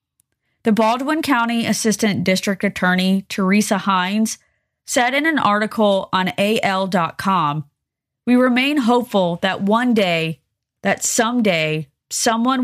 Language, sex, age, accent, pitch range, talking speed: English, female, 20-39, American, 175-225 Hz, 110 wpm